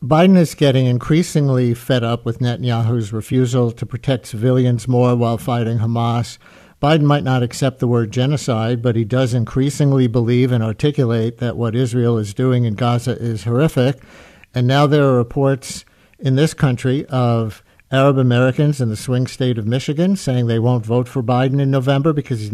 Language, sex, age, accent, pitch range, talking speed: English, male, 60-79, American, 120-140 Hz, 175 wpm